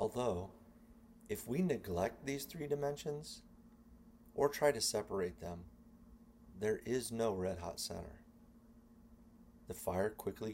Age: 40-59